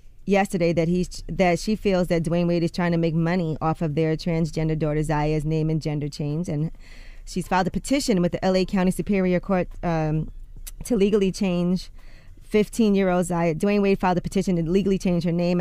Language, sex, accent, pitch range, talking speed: English, female, American, 170-195 Hz, 205 wpm